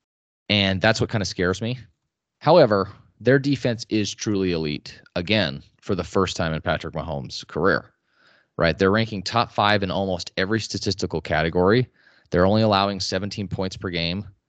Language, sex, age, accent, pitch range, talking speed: English, male, 20-39, American, 85-110 Hz, 160 wpm